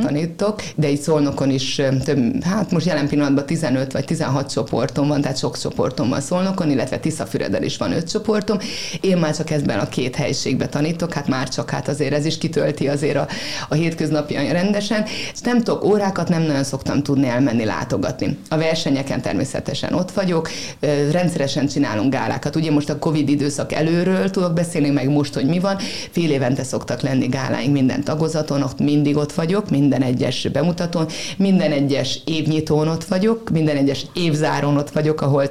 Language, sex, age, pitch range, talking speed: Hungarian, female, 30-49, 140-165 Hz, 170 wpm